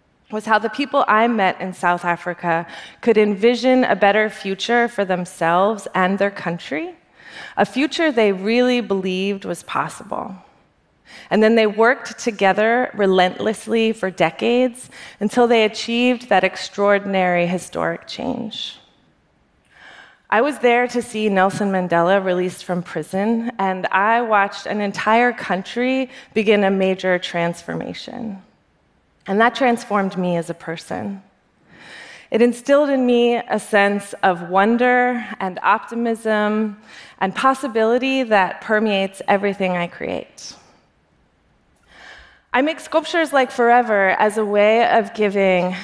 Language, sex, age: Korean, female, 20-39